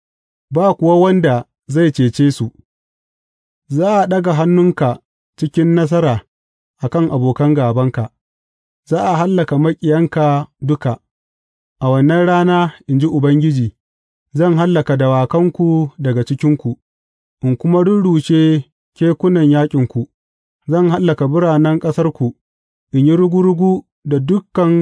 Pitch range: 125-170 Hz